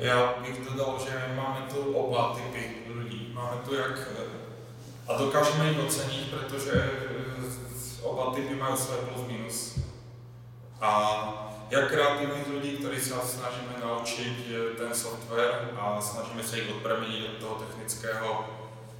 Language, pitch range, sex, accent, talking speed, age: Czech, 110-125 Hz, male, native, 135 wpm, 20-39